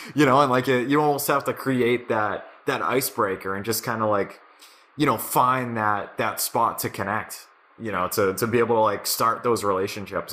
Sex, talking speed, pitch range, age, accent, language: male, 215 wpm, 100-135 Hz, 20-39, American, English